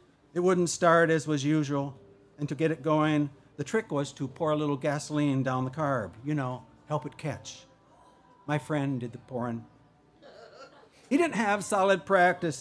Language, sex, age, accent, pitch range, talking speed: English, male, 60-79, American, 130-155 Hz, 175 wpm